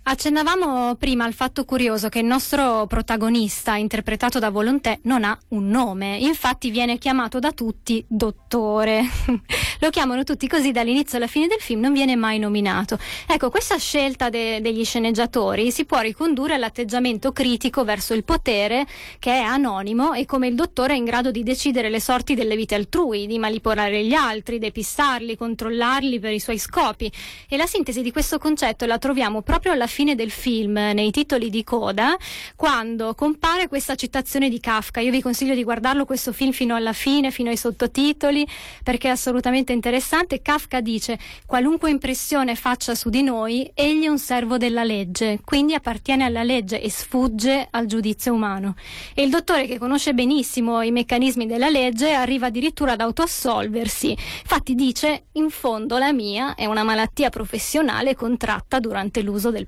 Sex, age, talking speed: female, 20-39, 170 wpm